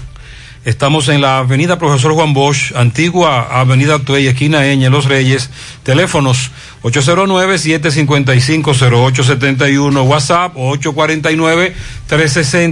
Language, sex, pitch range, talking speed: Spanish, male, 130-165 Hz, 80 wpm